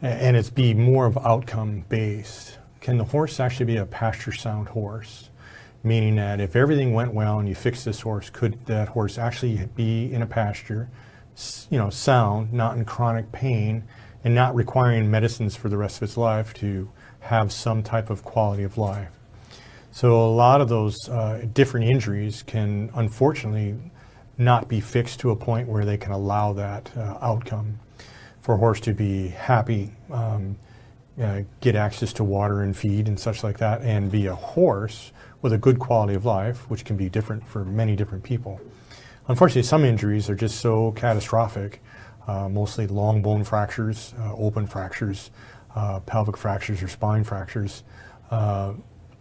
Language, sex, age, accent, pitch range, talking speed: English, male, 40-59, American, 105-120 Hz, 170 wpm